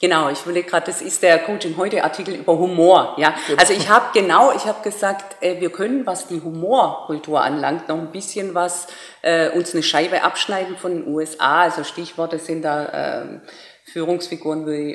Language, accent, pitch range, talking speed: German, German, 160-205 Hz, 175 wpm